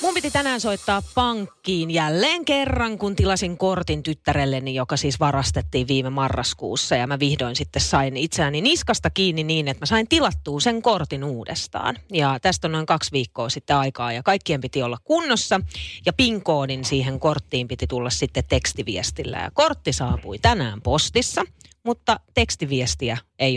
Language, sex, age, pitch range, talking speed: Finnish, female, 30-49, 130-190 Hz, 155 wpm